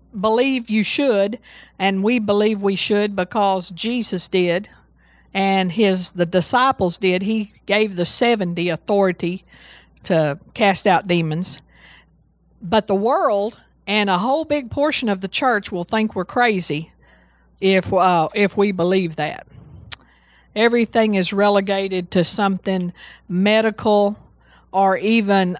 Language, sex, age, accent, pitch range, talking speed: English, female, 50-69, American, 170-210 Hz, 125 wpm